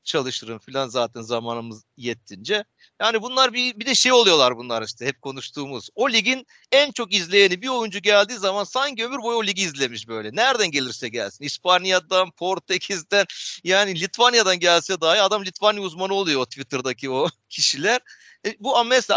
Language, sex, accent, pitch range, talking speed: Turkish, male, native, 140-200 Hz, 165 wpm